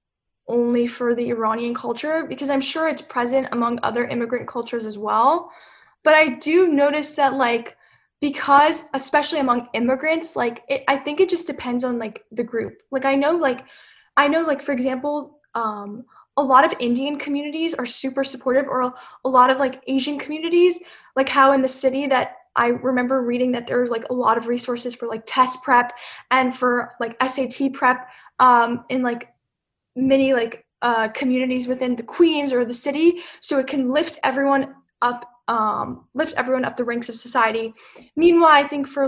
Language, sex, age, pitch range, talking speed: English, female, 10-29, 240-285 Hz, 180 wpm